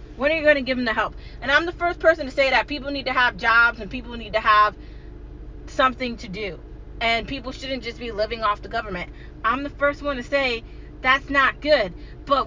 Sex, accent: female, American